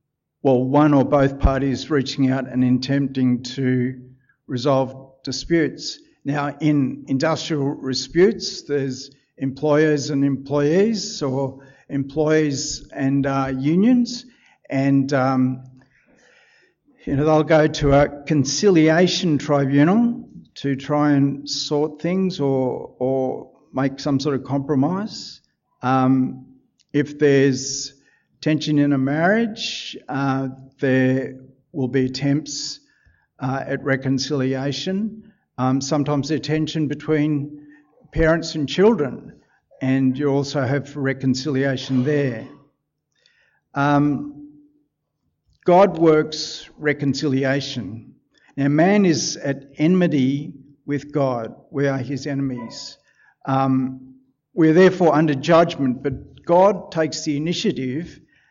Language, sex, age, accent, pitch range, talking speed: English, male, 60-79, Australian, 135-155 Hz, 105 wpm